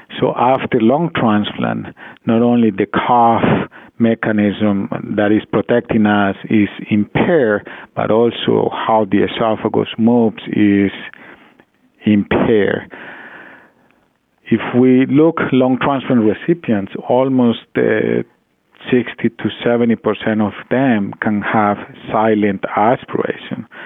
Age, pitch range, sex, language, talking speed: 50-69, 100-115 Hz, male, English, 105 wpm